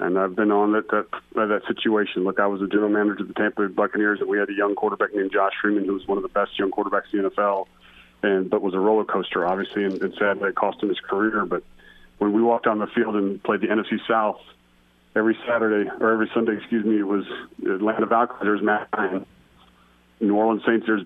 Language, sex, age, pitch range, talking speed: English, male, 30-49, 100-115 Hz, 240 wpm